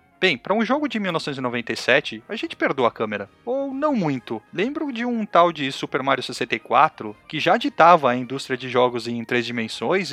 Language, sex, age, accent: Portuguese, male, 40-59, Brazilian